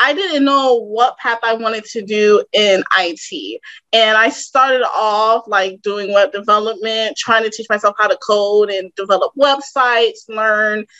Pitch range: 200-270 Hz